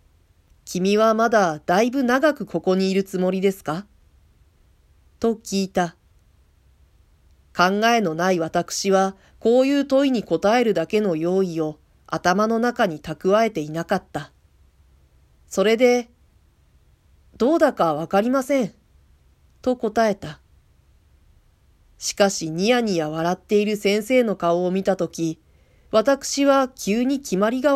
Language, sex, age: Japanese, female, 40-59